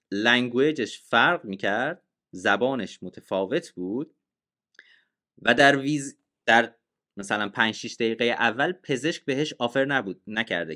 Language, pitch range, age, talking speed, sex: Persian, 105-160 Hz, 30-49, 110 wpm, male